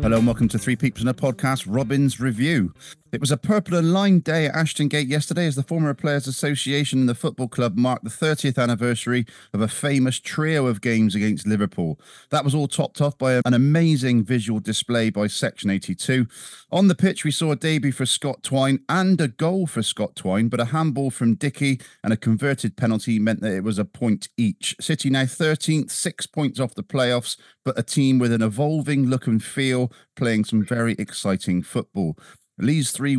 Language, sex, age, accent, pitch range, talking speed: English, male, 40-59, British, 115-145 Hz, 205 wpm